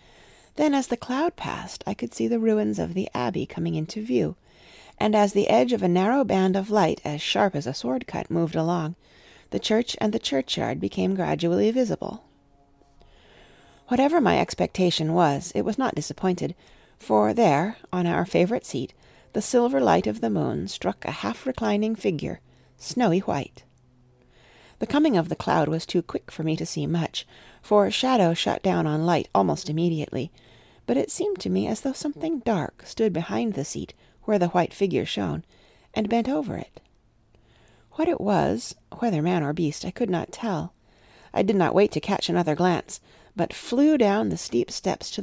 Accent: American